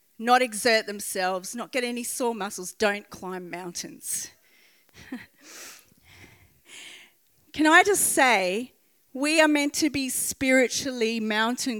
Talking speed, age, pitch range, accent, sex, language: 110 wpm, 40-59, 245-345 Hz, Australian, female, English